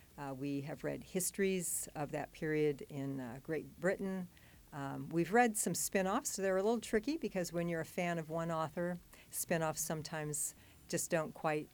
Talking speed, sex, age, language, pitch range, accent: 180 wpm, female, 50-69, English, 160-190 Hz, American